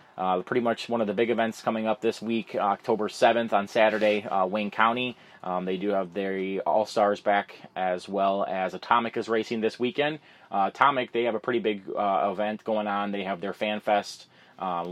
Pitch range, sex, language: 95-110 Hz, male, English